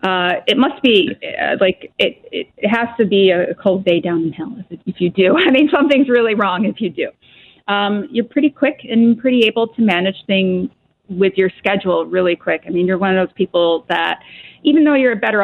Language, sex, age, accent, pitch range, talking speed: English, female, 30-49, American, 185-235 Hz, 220 wpm